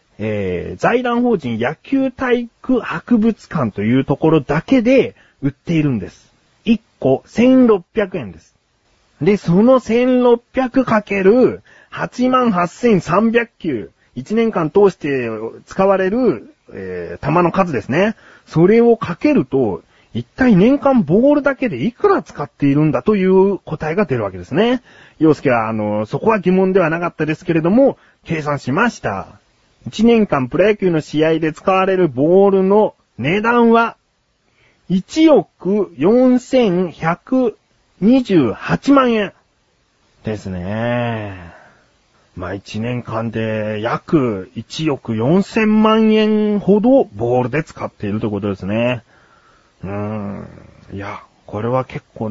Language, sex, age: Japanese, male, 30-49